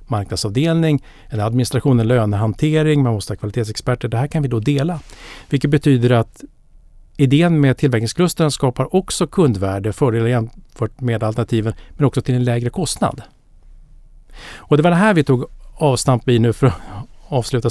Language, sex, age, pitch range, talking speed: Swedish, male, 50-69, 110-140 Hz, 150 wpm